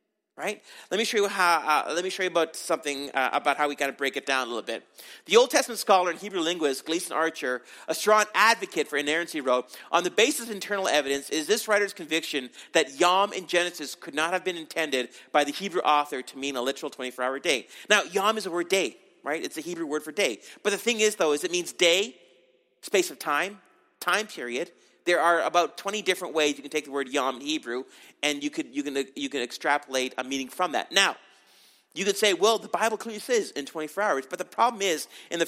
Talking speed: 240 wpm